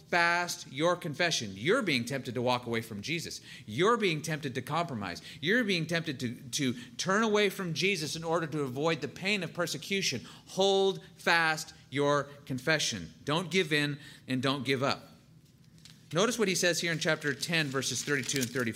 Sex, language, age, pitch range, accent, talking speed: male, English, 40-59, 130-170 Hz, American, 180 wpm